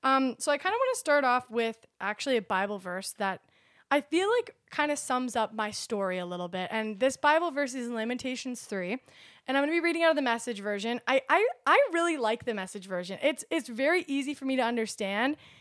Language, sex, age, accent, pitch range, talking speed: English, female, 20-39, American, 210-265 Hz, 240 wpm